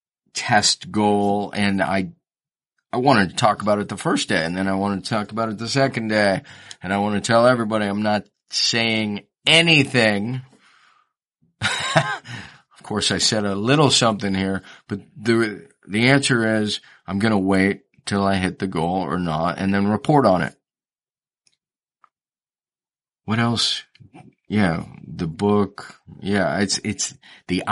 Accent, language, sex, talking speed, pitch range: American, English, male, 155 wpm, 95-115 Hz